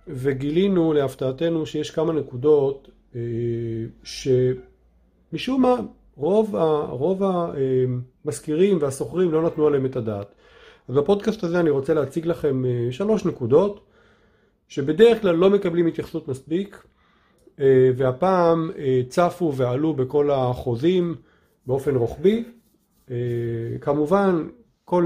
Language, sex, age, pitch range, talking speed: Hebrew, male, 40-59, 125-180 Hz, 95 wpm